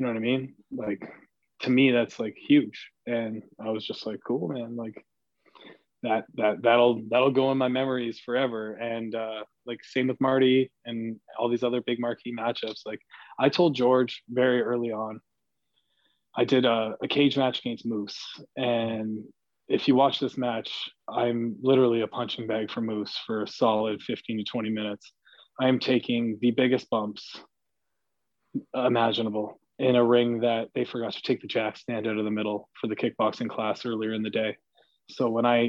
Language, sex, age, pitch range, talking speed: English, male, 20-39, 110-130 Hz, 185 wpm